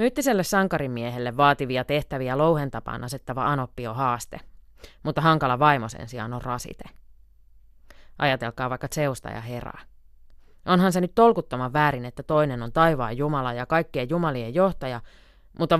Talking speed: 135 wpm